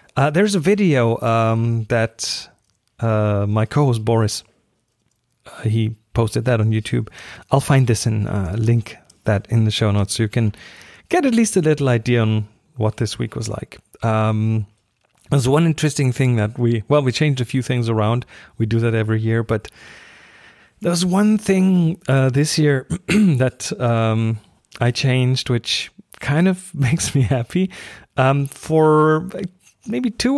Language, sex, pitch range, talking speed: English, male, 110-145 Hz, 160 wpm